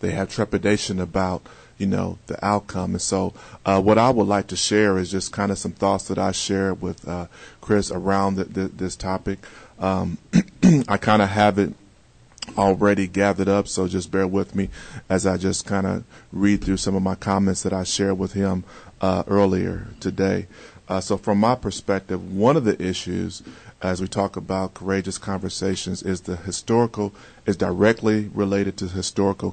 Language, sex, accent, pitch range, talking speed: English, male, American, 95-105 Hz, 185 wpm